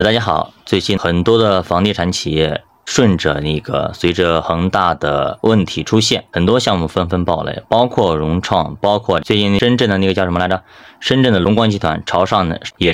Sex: male